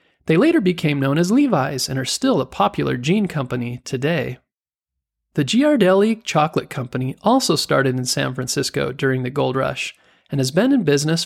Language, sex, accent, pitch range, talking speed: English, male, American, 135-190 Hz, 170 wpm